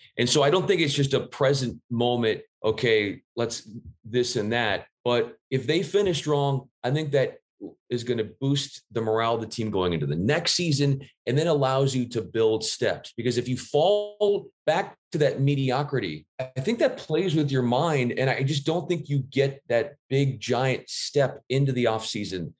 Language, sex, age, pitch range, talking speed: English, male, 30-49, 115-150 Hz, 195 wpm